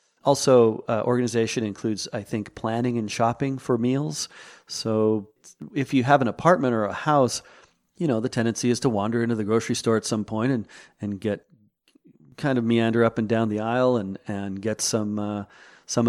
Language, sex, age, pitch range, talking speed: English, male, 40-59, 100-115 Hz, 185 wpm